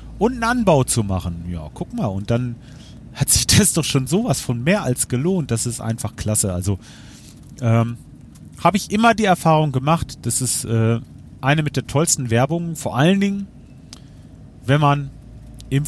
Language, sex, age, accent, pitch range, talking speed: German, male, 40-59, German, 110-140 Hz, 175 wpm